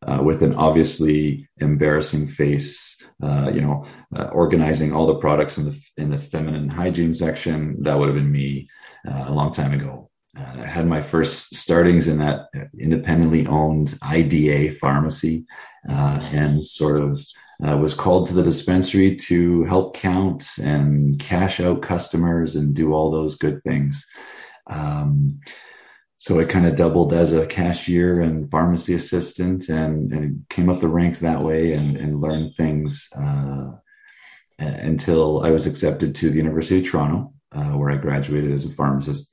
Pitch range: 70-80 Hz